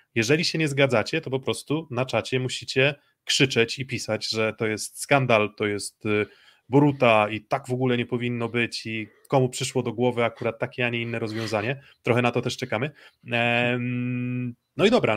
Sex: male